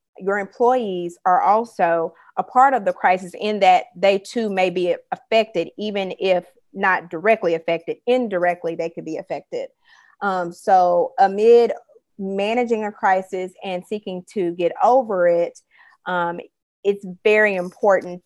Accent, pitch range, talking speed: American, 175-205 Hz, 140 wpm